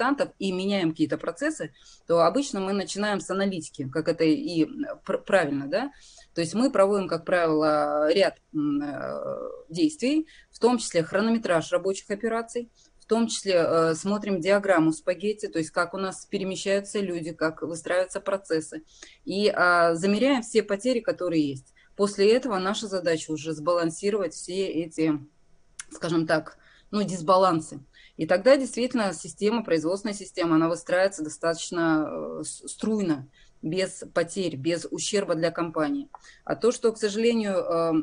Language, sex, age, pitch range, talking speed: Russian, female, 20-39, 165-210 Hz, 135 wpm